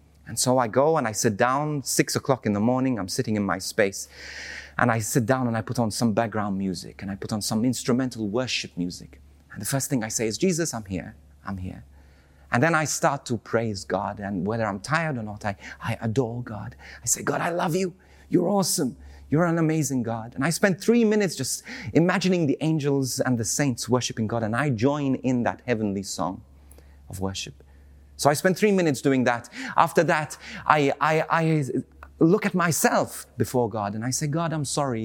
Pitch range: 105-155 Hz